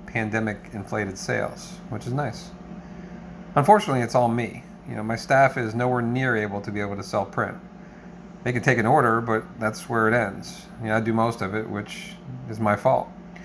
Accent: American